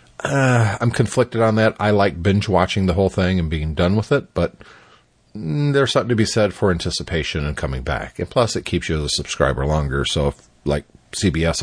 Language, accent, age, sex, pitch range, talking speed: English, American, 40-59, male, 80-110 Hz, 210 wpm